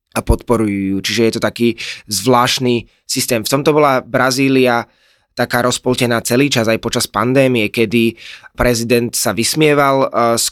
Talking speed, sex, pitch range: 135 wpm, male, 110-125 Hz